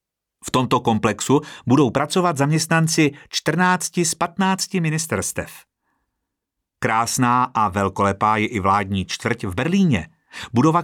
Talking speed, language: 110 wpm, Czech